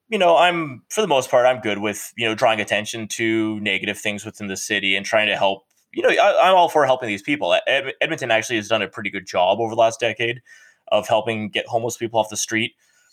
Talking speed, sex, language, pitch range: 240 wpm, male, English, 105-145 Hz